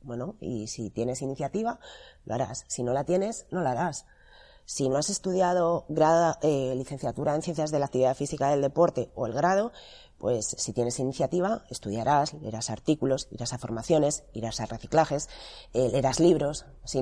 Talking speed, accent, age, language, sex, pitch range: 170 wpm, Spanish, 30-49, Spanish, female, 120-165 Hz